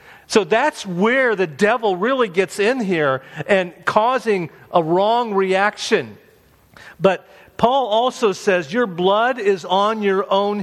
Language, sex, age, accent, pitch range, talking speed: English, male, 50-69, American, 135-200 Hz, 135 wpm